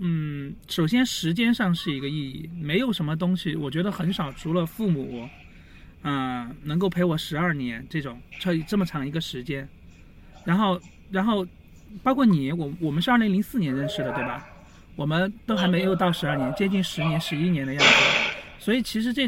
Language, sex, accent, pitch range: Chinese, male, native, 150-195 Hz